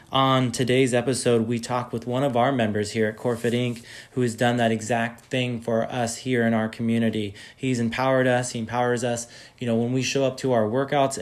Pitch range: 115-130 Hz